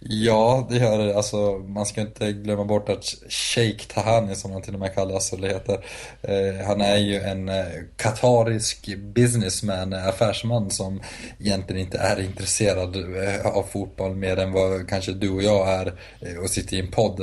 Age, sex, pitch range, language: 20-39, male, 95-110 Hz, Swedish